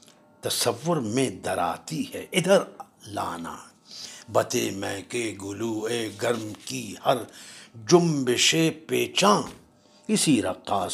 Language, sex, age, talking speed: Urdu, male, 60-79, 100 wpm